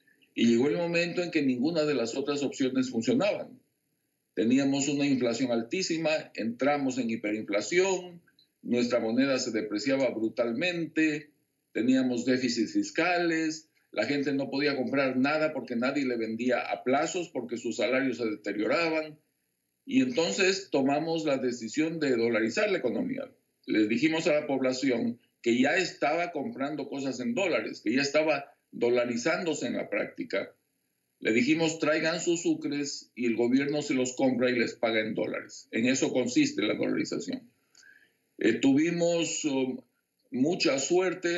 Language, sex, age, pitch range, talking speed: English, male, 50-69, 125-165 Hz, 140 wpm